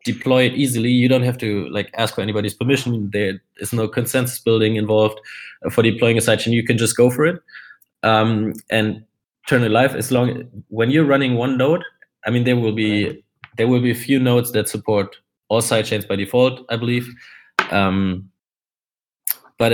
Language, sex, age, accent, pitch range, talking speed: English, male, 20-39, German, 105-125 Hz, 190 wpm